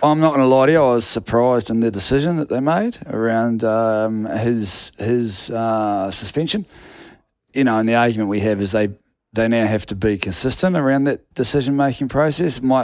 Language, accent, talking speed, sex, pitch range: English, Australian, 195 wpm, male, 100-125 Hz